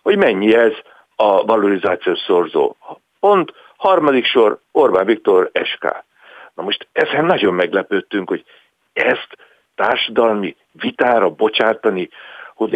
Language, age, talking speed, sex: Hungarian, 60-79, 110 wpm, male